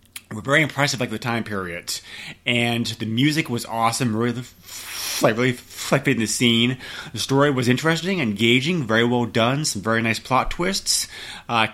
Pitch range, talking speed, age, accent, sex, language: 110-145 Hz, 170 wpm, 30-49, American, male, English